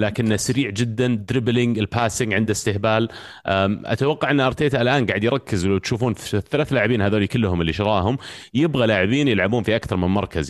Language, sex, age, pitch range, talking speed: Arabic, male, 30-49, 90-115 Hz, 160 wpm